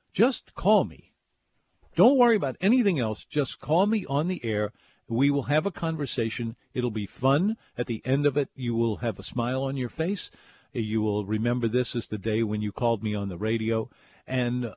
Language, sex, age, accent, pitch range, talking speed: English, male, 50-69, American, 110-145 Hz, 205 wpm